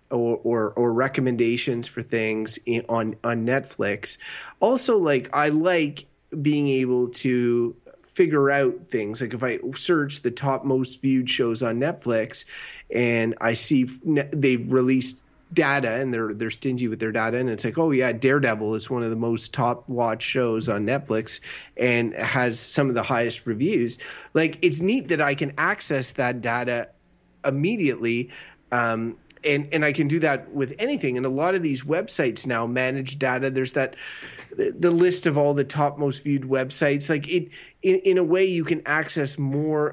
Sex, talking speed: male, 175 wpm